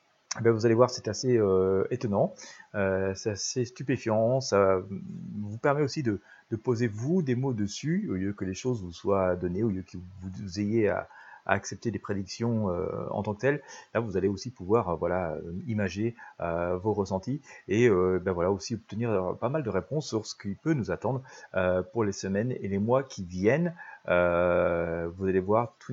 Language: French